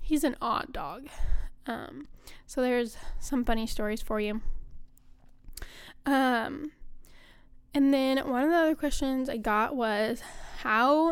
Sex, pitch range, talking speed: female, 220-265 Hz, 130 wpm